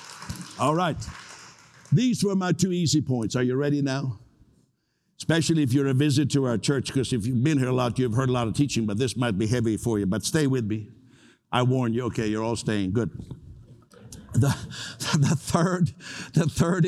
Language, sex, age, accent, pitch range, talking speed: English, male, 60-79, American, 115-155 Hz, 205 wpm